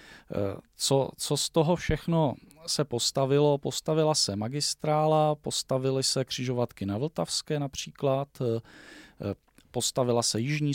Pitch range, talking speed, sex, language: 115-140 Hz, 105 wpm, male, Czech